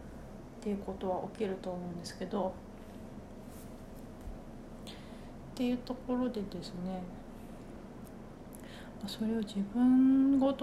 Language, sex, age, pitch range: Japanese, female, 40-59, 185-235 Hz